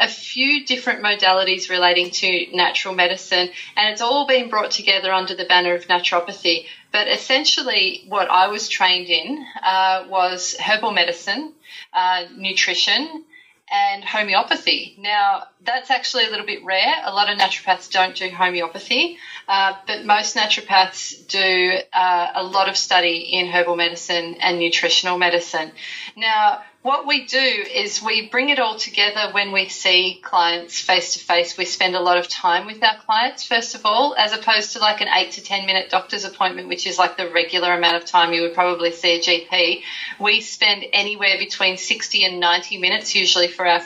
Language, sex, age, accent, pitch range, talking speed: English, female, 30-49, Australian, 180-215 Hz, 170 wpm